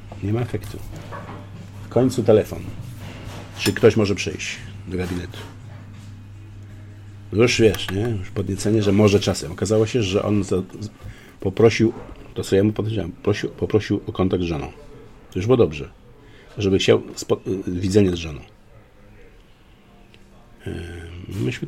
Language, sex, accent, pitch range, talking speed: Polish, male, native, 95-115 Hz, 125 wpm